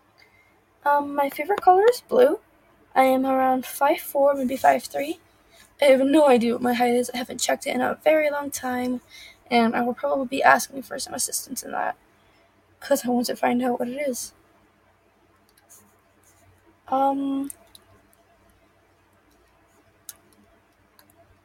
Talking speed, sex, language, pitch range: 140 wpm, female, English, 235-285 Hz